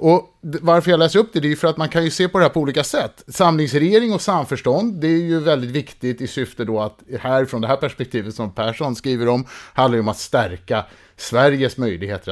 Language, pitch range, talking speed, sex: English, 115-150 Hz, 235 wpm, male